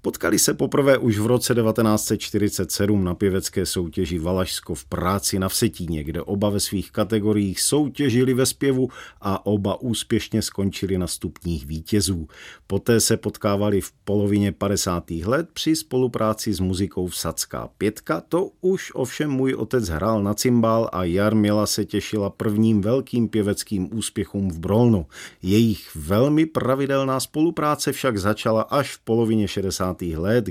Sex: male